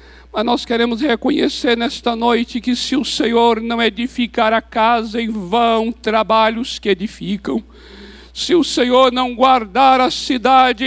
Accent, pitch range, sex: Brazilian, 235-275 Hz, male